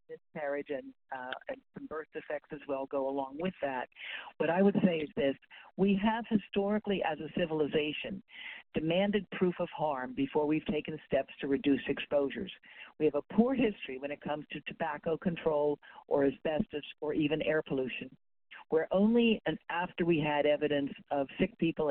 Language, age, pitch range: English, 50-69, 150-200 Hz